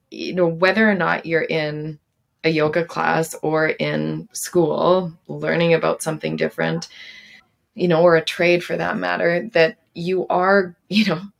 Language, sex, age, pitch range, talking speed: English, female, 20-39, 160-185 Hz, 160 wpm